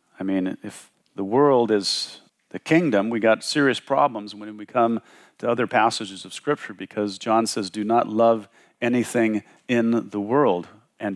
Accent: American